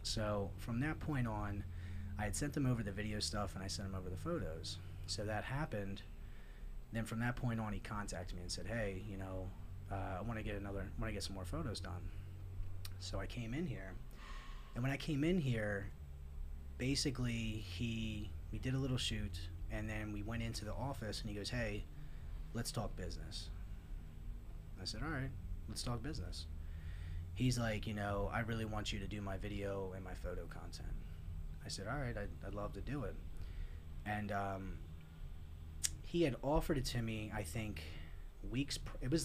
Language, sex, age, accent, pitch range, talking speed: English, male, 30-49, American, 90-115 Hz, 195 wpm